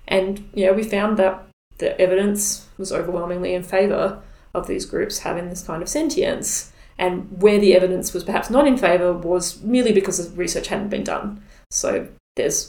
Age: 20-39